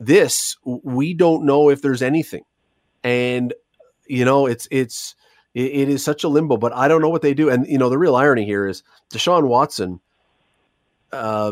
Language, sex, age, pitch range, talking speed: English, male, 40-59, 120-145 Hz, 180 wpm